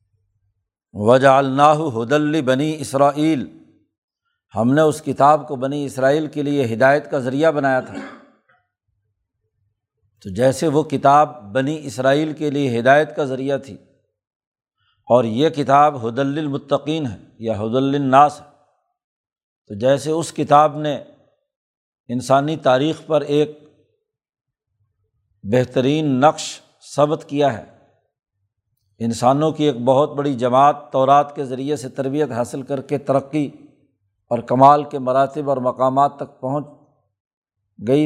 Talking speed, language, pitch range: 125 wpm, Urdu, 125-150 Hz